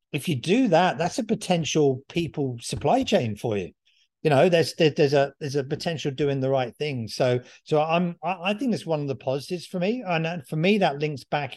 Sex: male